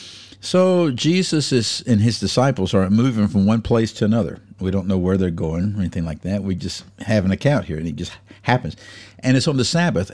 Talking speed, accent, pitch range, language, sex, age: 220 wpm, American, 100-135 Hz, English, male, 50-69